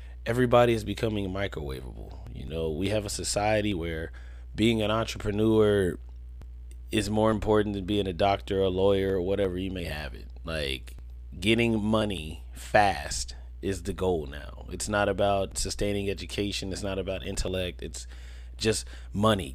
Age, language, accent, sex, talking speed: 30-49, English, American, male, 150 wpm